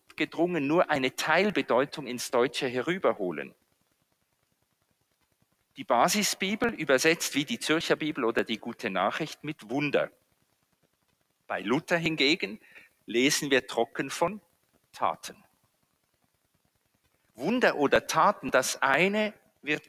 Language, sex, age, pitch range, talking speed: German, male, 50-69, 130-180 Hz, 100 wpm